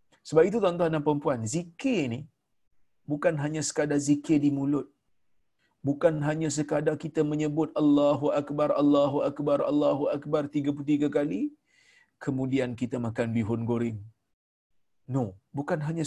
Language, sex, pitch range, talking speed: Malayalam, male, 135-155 Hz, 125 wpm